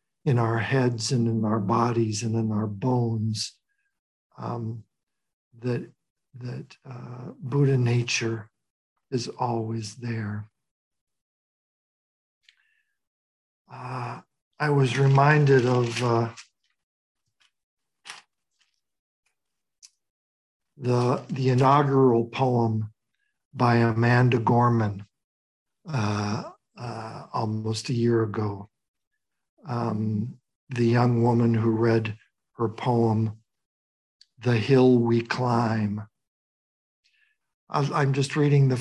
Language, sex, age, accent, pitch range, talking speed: English, male, 60-79, American, 115-140 Hz, 85 wpm